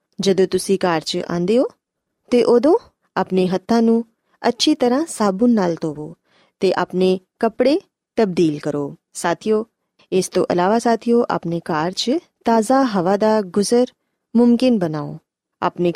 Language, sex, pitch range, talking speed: Punjabi, female, 175-230 Hz, 130 wpm